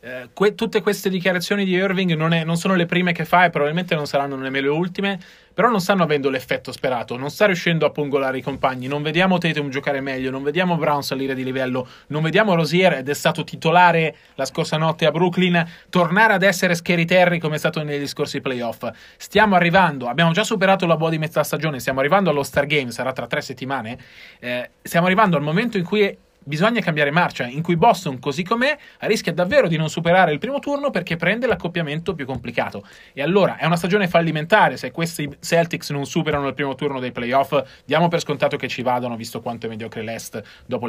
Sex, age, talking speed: male, 30-49, 210 wpm